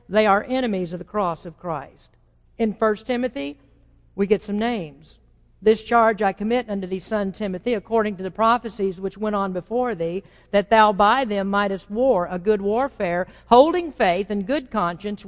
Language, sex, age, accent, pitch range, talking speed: English, female, 50-69, American, 175-235 Hz, 180 wpm